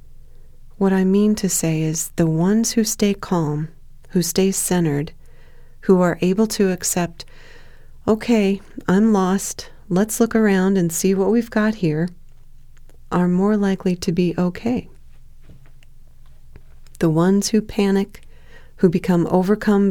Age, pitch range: 40-59, 160-195 Hz